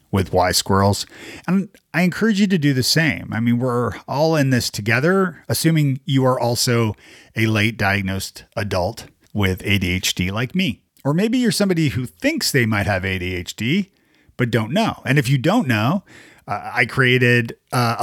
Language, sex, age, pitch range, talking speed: English, male, 40-59, 100-140 Hz, 175 wpm